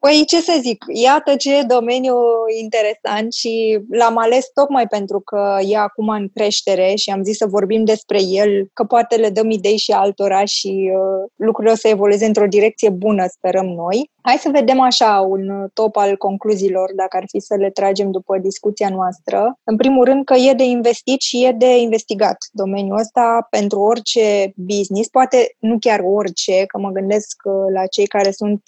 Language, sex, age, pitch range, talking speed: Romanian, female, 20-39, 200-235 Hz, 180 wpm